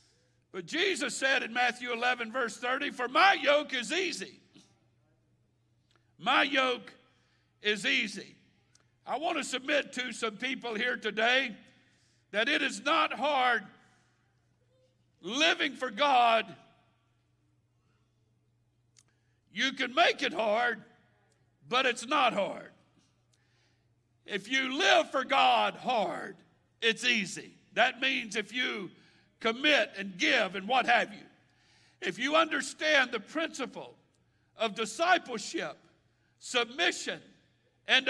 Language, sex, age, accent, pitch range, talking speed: English, male, 60-79, American, 215-295 Hz, 110 wpm